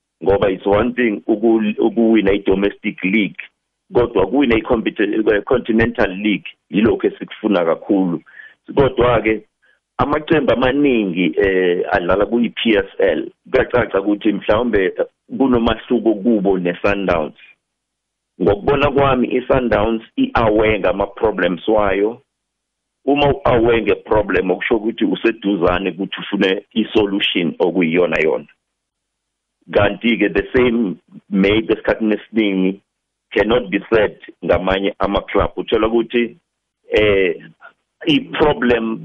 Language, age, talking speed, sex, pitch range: English, 50-69, 110 wpm, male, 100-125 Hz